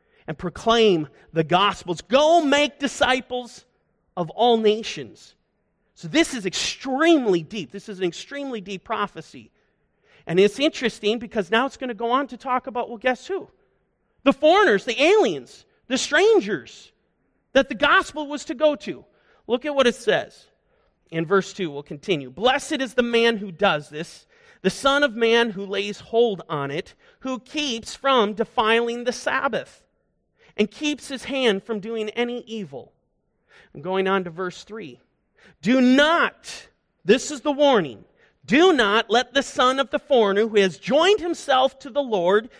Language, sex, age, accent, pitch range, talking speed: English, male, 40-59, American, 200-270 Hz, 165 wpm